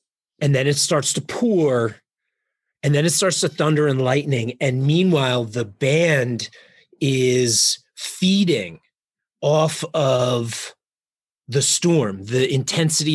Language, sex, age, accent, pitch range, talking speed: English, male, 30-49, American, 120-155 Hz, 120 wpm